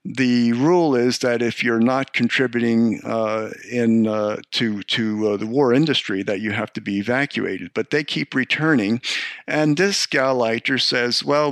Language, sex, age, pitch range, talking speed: English, male, 50-69, 110-135 Hz, 165 wpm